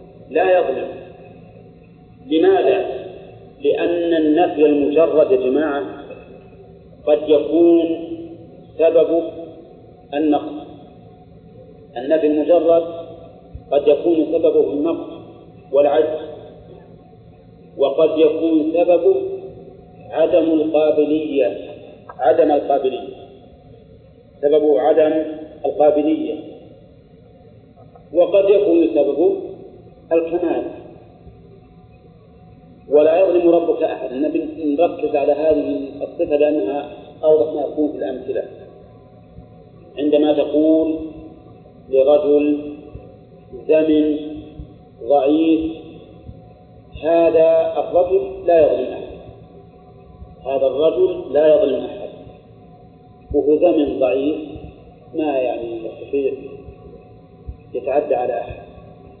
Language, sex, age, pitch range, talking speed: Arabic, male, 40-59, 150-170 Hz, 70 wpm